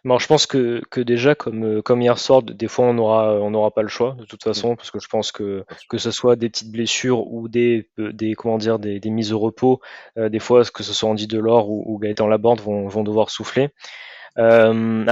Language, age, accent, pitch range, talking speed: French, 20-39, French, 110-125 Hz, 240 wpm